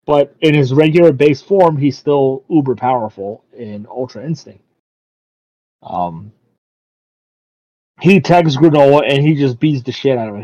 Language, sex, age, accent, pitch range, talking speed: English, male, 30-49, American, 125-155 Hz, 145 wpm